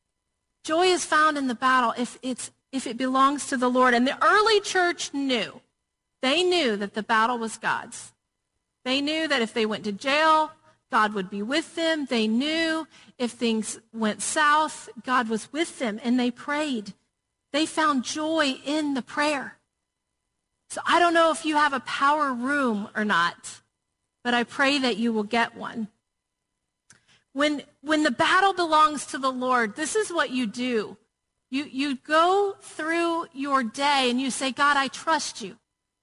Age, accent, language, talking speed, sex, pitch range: 40-59, American, English, 170 wpm, female, 240-305 Hz